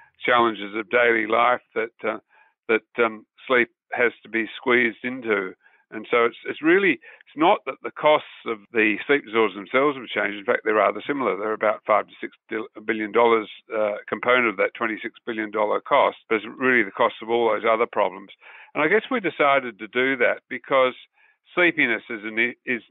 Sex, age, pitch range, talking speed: male, 50-69, 105-120 Hz, 185 wpm